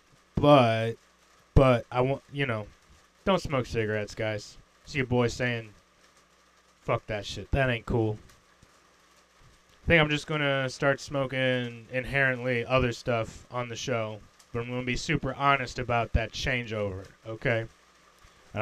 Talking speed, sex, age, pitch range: 150 wpm, male, 20-39, 110-145 Hz